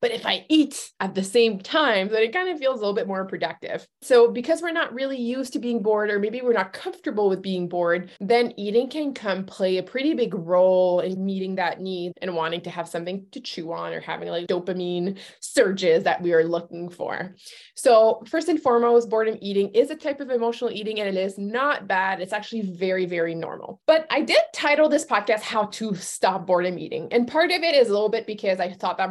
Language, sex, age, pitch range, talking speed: English, female, 20-39, 185-265 Hz, 225 wpm